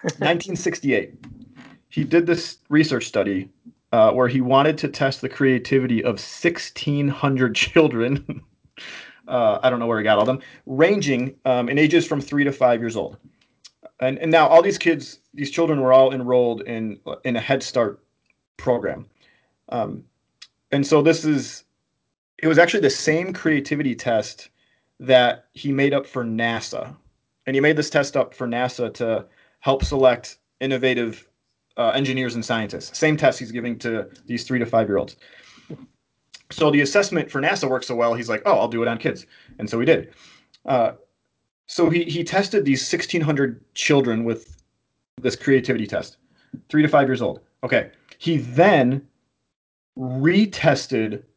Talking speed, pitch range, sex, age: 160 wpm, 120-155 Hz, male, 30-49